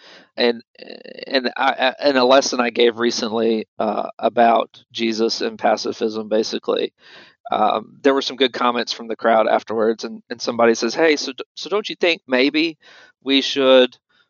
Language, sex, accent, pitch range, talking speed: English, male, American, 120-150 Hz, 160 wpm